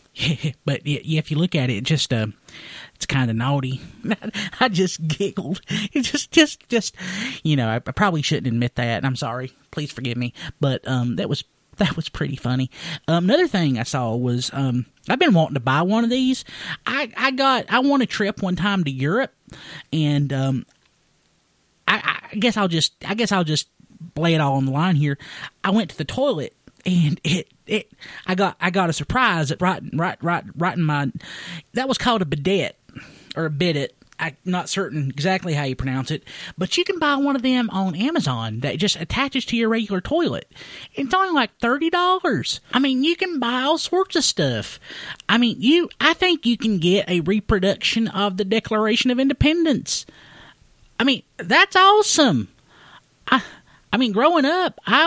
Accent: American